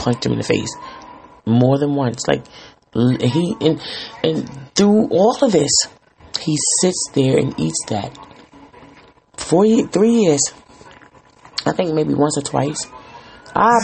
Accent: American